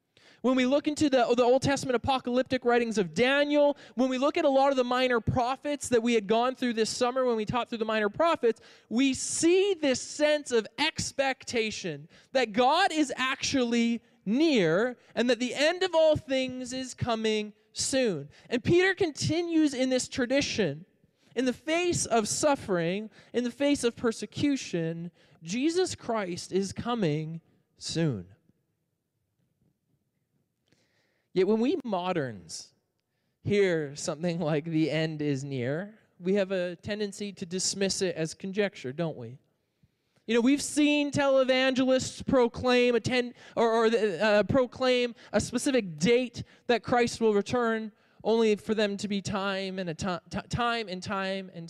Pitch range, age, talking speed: 185-260 Hz, 20-39, 155 wpm